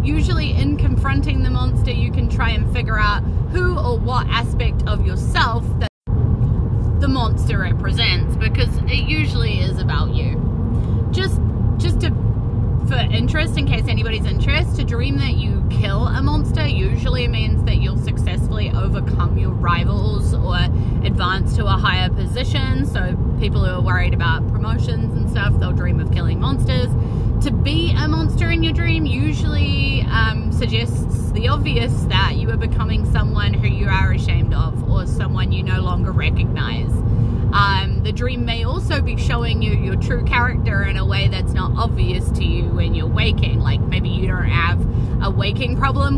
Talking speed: 170 wpm